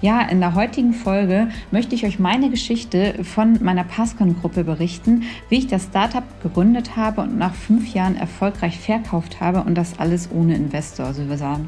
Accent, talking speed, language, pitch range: German, 180 wpm, German, 180-210 Hz